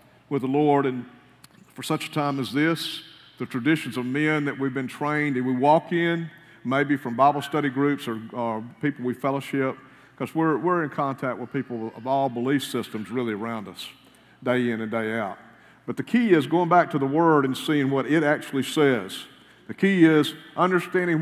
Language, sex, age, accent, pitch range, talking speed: English, male, 50-69, American, 130-165 Hz, 195 wpm